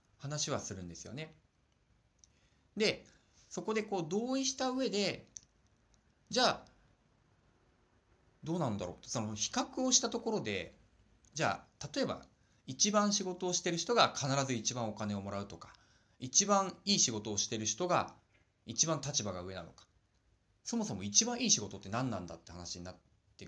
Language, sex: Japanese, male